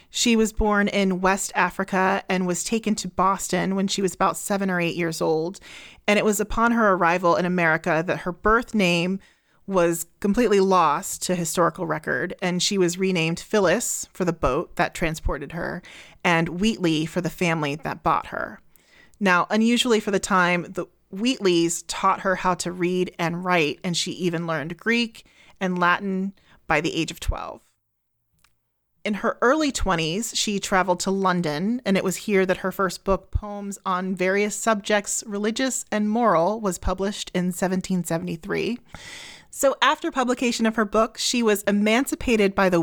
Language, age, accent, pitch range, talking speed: English, 30-49, American, 175-210 Hz, 170 wpm